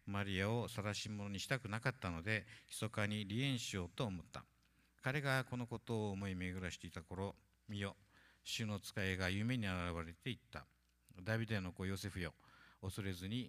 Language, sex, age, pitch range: Japanese, male, 50-69, 90-115 Hz